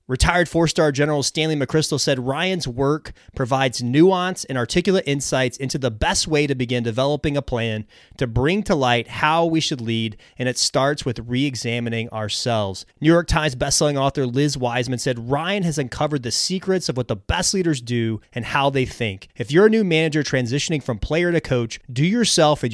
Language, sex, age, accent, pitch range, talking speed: English, male, 30-49, American, 125-155 Hz, 190 wpm